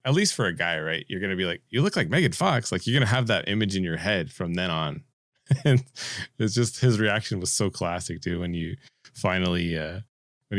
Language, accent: English, American